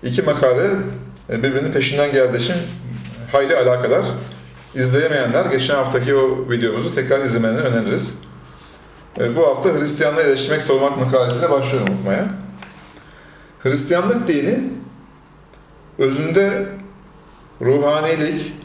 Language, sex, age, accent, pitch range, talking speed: Turkish, male, 40-59, native, 110-150 Hz, 85 wpm